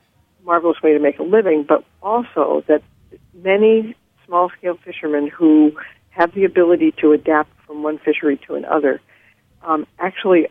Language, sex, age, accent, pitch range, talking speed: English, female, 50-69, American, 150-175 Hz, 145 wpm